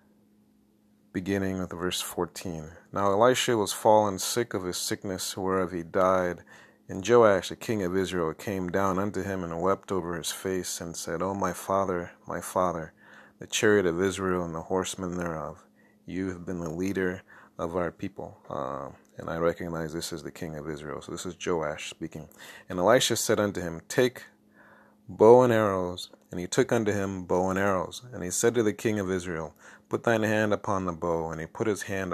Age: 30-49